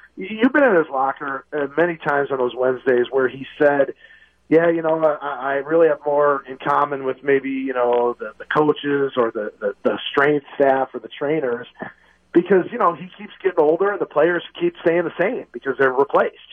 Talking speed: 190 wpm